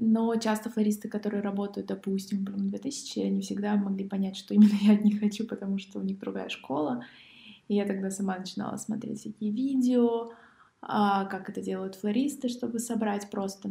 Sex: female